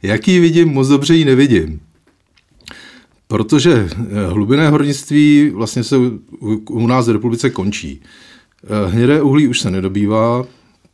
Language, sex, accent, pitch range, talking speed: Czech, male, native, 105-125 Hz, 115 wpm